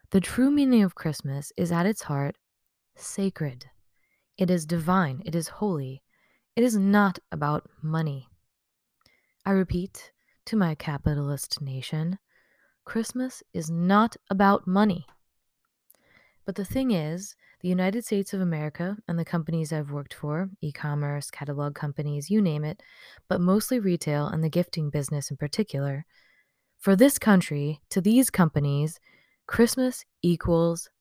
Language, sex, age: English, female, 20-39